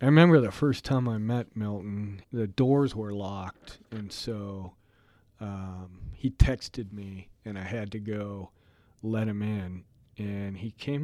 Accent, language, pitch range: American, English, 100-125 Hz